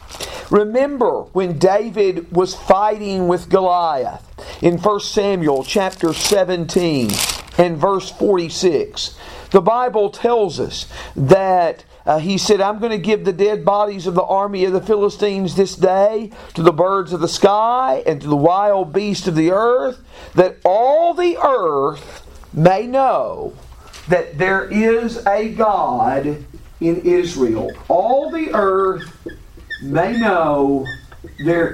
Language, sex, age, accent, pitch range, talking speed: English, male, 50-69, American, 160-210 Hz, 135 wpm